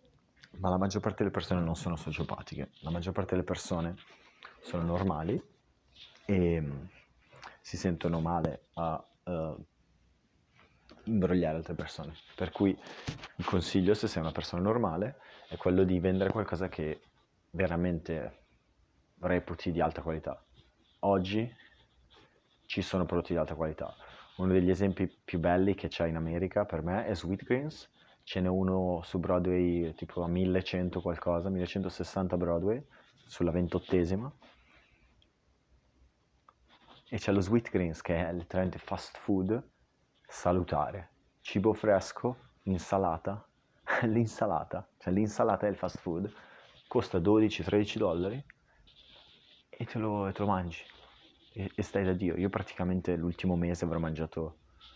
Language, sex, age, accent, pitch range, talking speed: Italian, male, 30-49, native, 85-100 Hz, 130 wpm